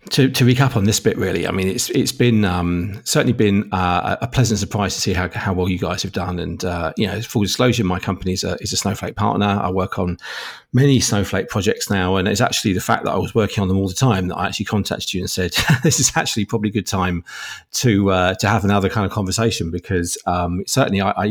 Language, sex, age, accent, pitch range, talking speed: English, male, 40-59, British, 95-120 Hz, 255 wpm